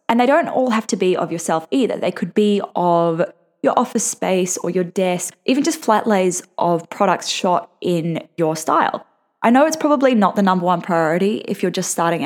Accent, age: Australian, 10-29